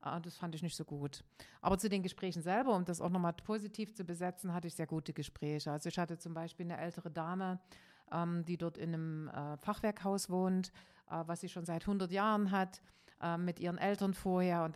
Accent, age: German, 40-59